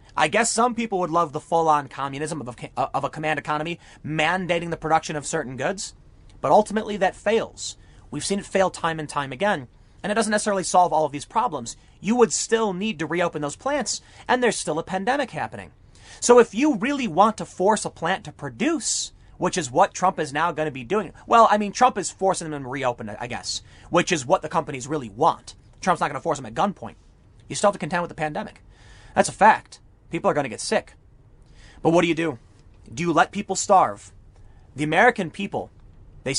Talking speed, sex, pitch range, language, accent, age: 225 wpm, male, 145-195 Hz, English, American, 30-49